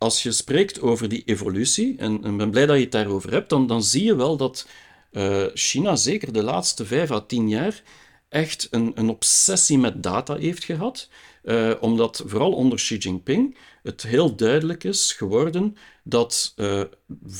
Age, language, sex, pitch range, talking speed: 50-69, Dutch, male, 110-155 Hz, 175 wpm